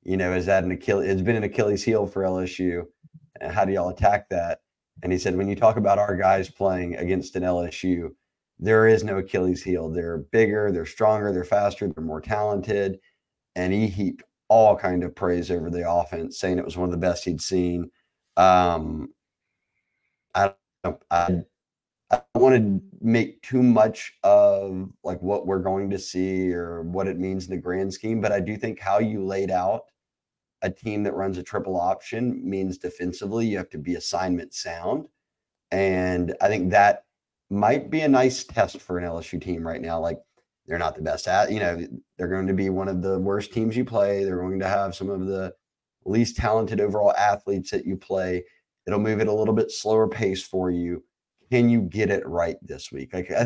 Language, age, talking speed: English, 30-49, 200 wpm